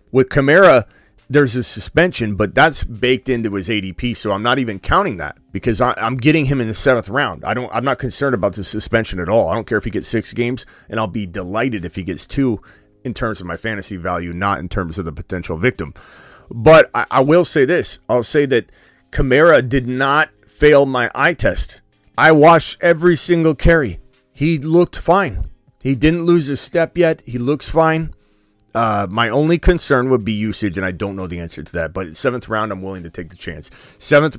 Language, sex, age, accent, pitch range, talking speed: English, male, 30-49, American, 100-145 Hz, 220 wpm